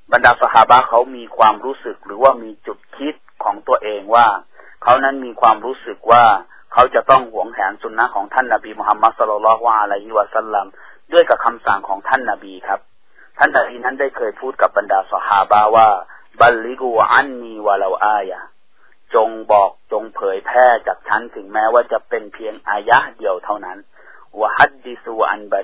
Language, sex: Thai, male